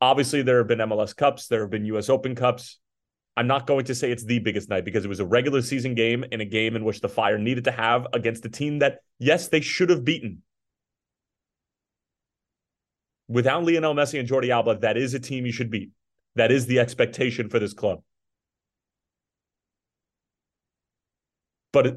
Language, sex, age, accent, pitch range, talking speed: English, male, 30-49, American, 110-140 Hz, 185 wpm